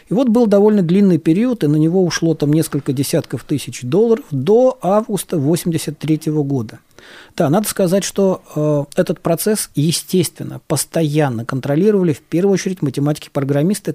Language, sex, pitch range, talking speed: Russian, male, 150-190 Hz, 140 wpm